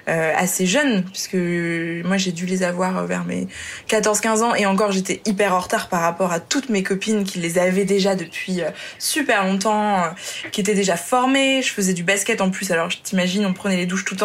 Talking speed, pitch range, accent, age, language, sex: 205 wpm, 185-225 Hz, French, 20-39, French, female